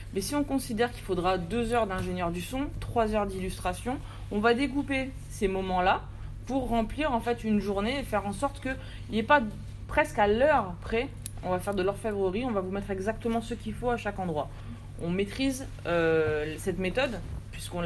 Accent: French